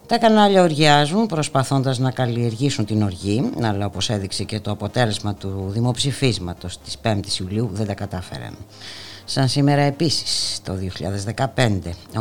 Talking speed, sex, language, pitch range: 135 wpm, female, Greek, 100-135 Hz